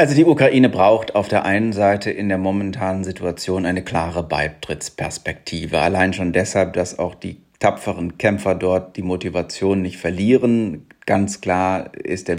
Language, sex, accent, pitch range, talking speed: German, male, German, 90-100 Hz, 155 wpm